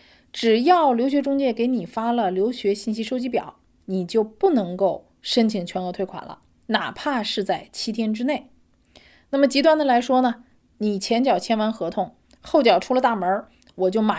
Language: Chinese